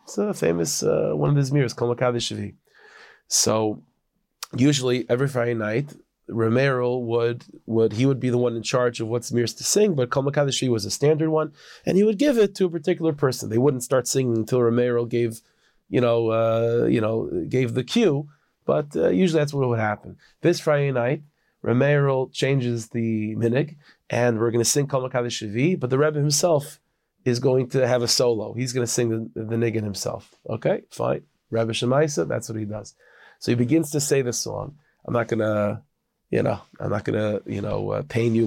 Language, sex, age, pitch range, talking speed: English, male, 30-49, 115-145 Hz, 195 wpm